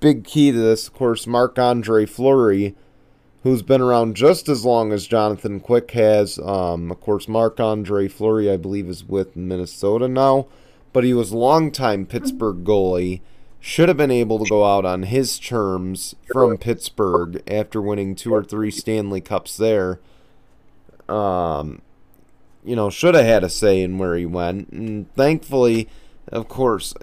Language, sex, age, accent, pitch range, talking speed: English, male, 30-49, American, 100-130 Hz, 160 wpm